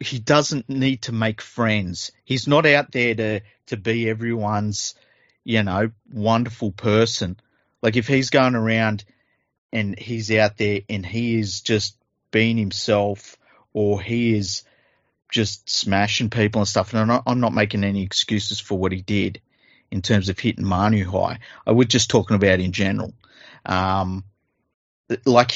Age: 30-49